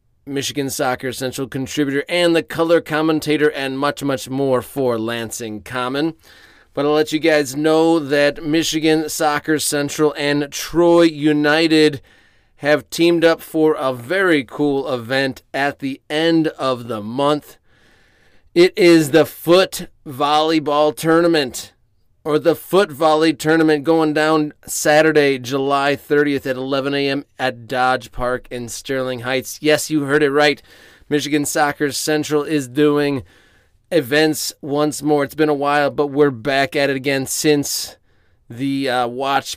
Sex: male